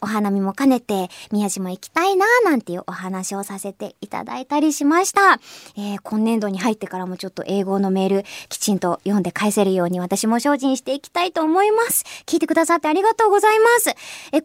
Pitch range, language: 265-395 Hz, Japanese